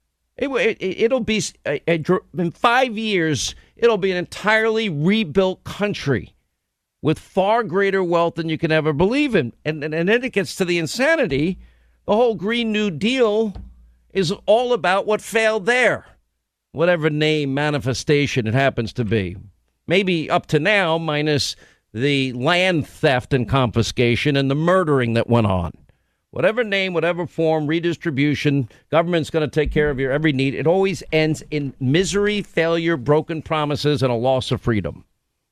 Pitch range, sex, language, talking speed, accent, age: 120-180 Hz, male, English, 155 wpm, American, 50-69